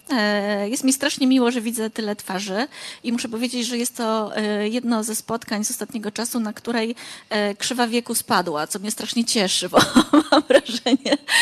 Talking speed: 170 wpm